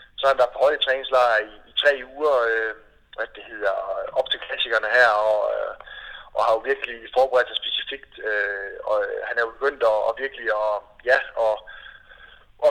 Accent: native